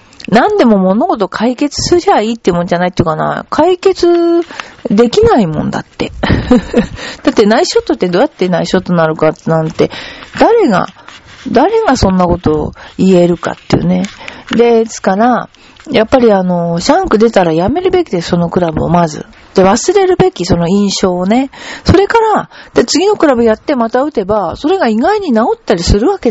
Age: 40-59